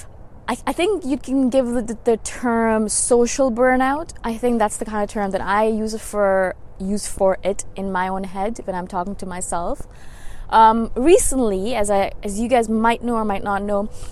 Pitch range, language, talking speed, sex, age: 195-240 Hz, English, 195 wpm, female, 20-39